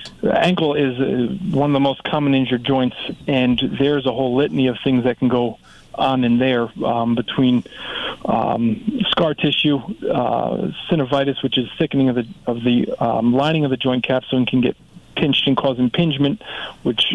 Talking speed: 175 wpm